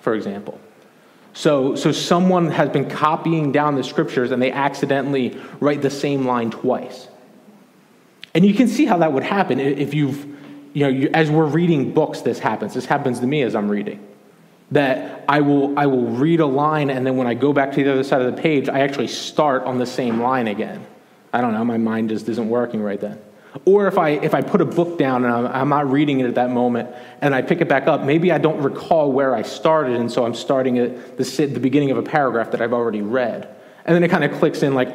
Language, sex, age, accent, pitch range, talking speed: English, male, 20-39, American, 125-160 Hz, 235 wpm